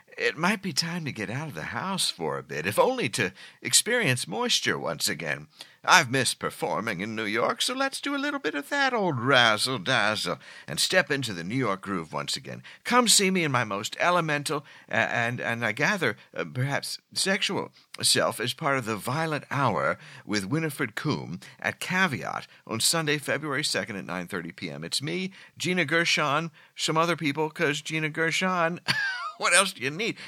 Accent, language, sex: American, English, male